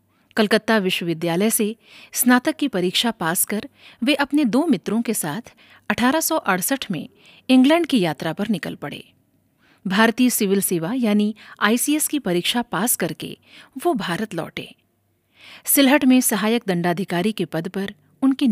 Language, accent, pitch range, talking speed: Hindi, native, 185-260 Hz, 135 wpm